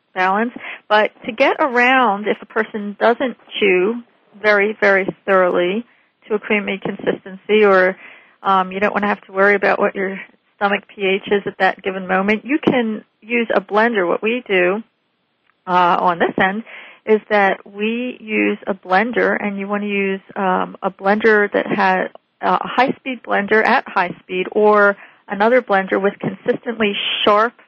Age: 40-59